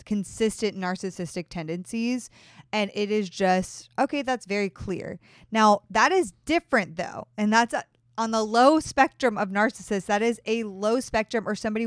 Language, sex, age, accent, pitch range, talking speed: English, female, 20-39, American, 190-235 Hz, 155 wpm